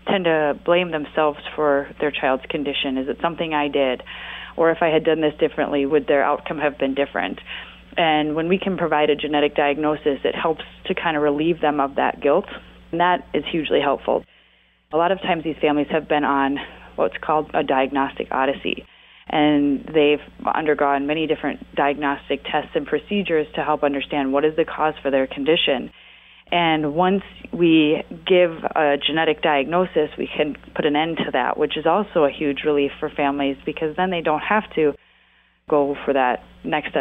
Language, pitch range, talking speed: English, 145-165 Hz, 185 wpm